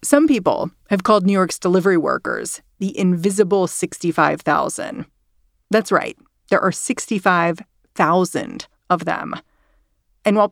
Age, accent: 40-59, American